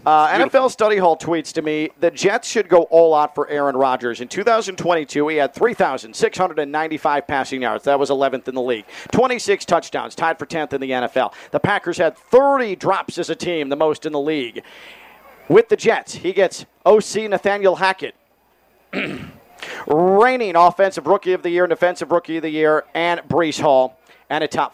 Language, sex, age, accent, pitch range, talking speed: English, male, 40-59, American, 145-185 Hz, 180 wpm